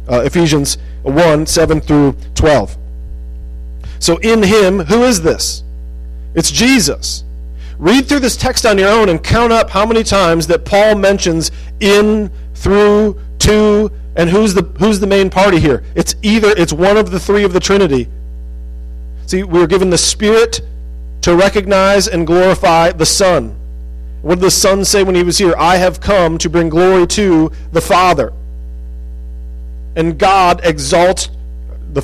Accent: American